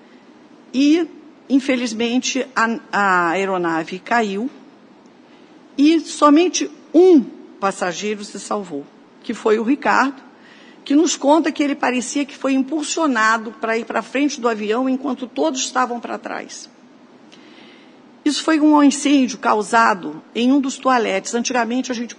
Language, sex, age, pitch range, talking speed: Portuguese, female, 50-69, 220-285 Hz, 130 wpm